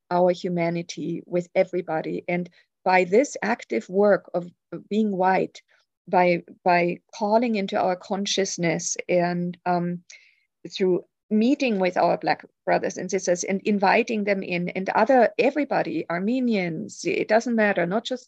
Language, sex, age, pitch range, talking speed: English, female, 50-69, 175-205 Hz, 135 wpm